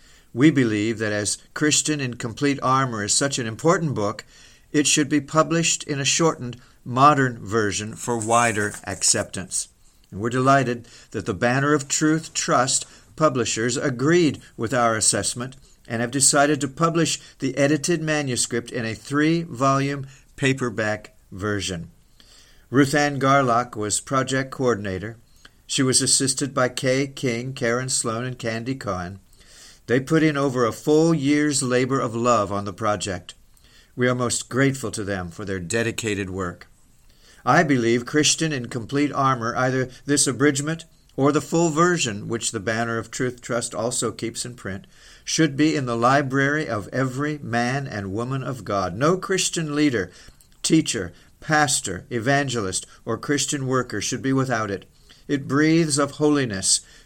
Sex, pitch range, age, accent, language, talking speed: male, 115-145 Hz, 50-69, American, English, 150 wpm